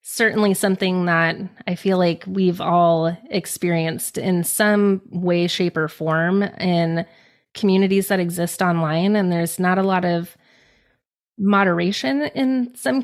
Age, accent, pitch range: 20-39, American, 170-205 Hz